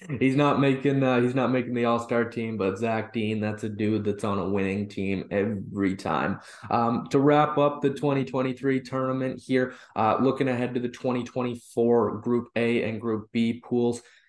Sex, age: male, 20-39